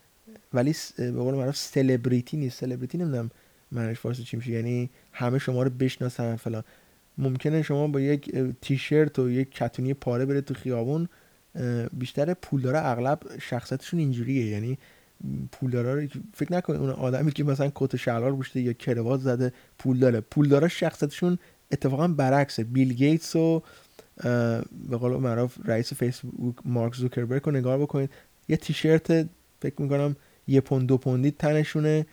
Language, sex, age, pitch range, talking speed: Persian, male, 20-39, 125-150 Hz, 140 wpm